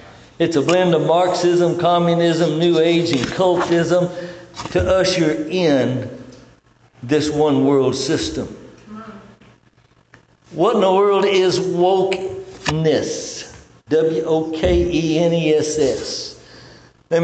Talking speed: 85 wpm